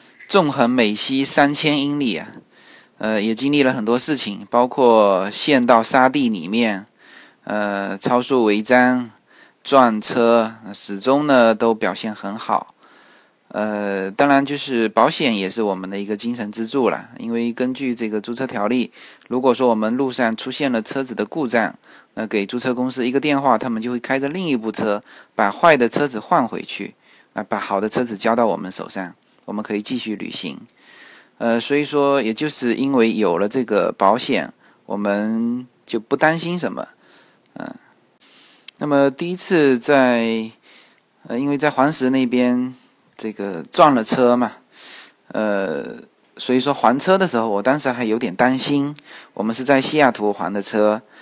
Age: 20-39